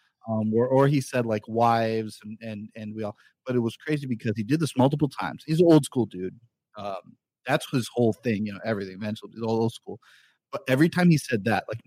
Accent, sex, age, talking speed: American, male, 30-49, 245 wpm